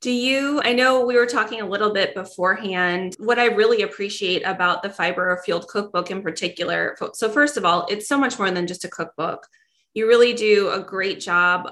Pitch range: 180-225 Hz